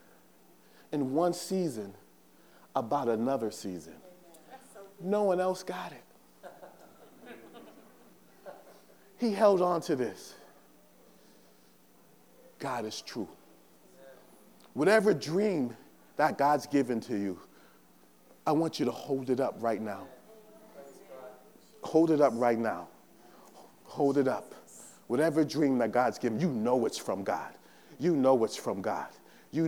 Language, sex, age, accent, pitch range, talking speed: English, male, 40-59, American, 115-160 Hz, 120 wpm